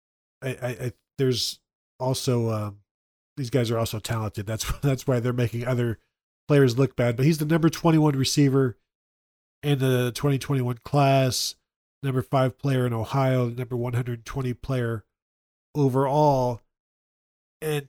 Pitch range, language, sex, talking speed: 120-140 Hz, English, male, 160 wpm